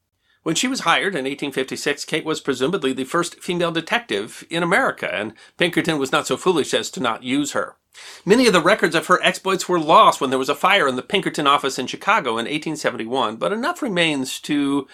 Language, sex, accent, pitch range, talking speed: English, male, American, 140-205 Hz, 210 wpm